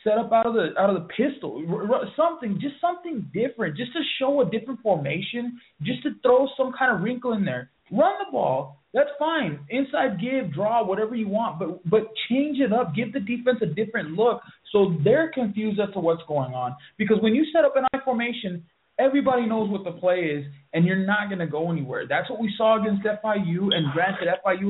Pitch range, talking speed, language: 165-225 Hz, 220 wpm, English